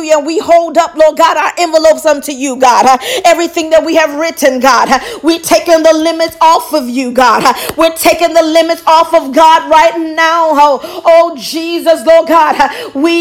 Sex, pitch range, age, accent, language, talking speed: female, 300-340 Hz, 40-59, American, English, 175 wpm